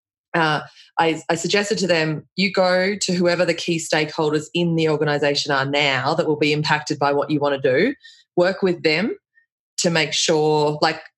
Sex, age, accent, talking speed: female, 20-39, Australian, 190 wpm